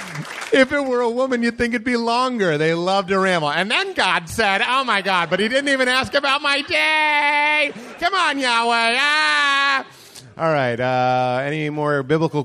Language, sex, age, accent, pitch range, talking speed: English, male, 30-49, American, 120-190 Hz, 190 wpm